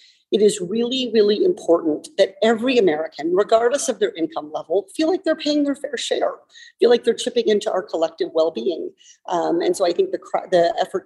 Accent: American